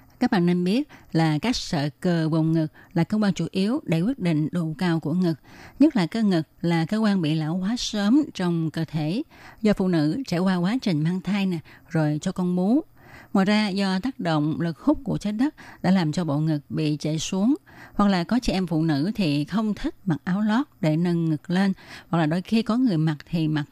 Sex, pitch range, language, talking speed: female, 160-210 Hz, Vietnamese, 240 wpm